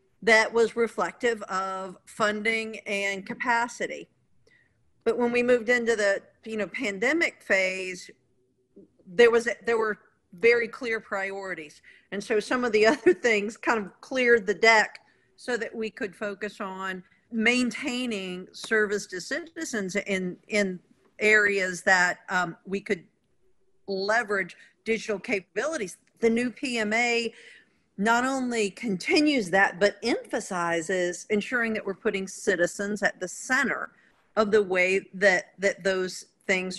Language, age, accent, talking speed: English, 50-69, American, 130 wpm